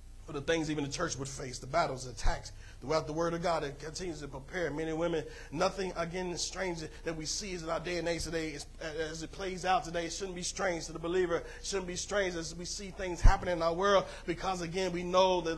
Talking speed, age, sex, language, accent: 245 wpm, 40-59, male, English, American